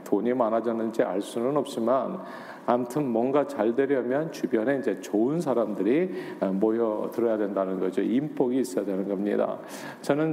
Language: Korean